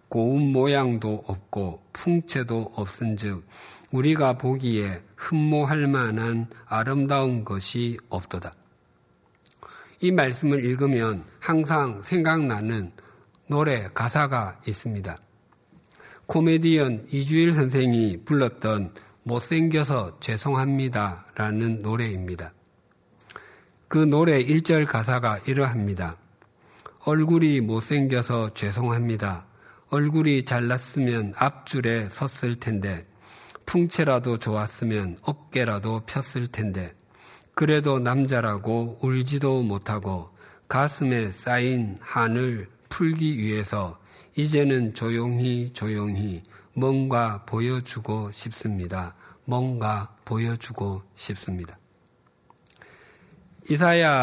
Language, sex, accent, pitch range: Korean, male, native, 105-140 Hz